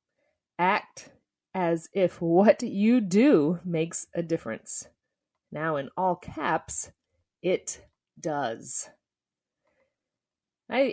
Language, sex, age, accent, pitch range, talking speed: English, female, 30-49, American, 155-215 Hz, 90 wpm